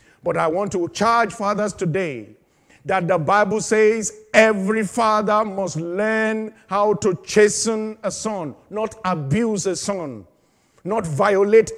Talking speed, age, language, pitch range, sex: 130 wpm, 50-69, English, 180-220 Hz, male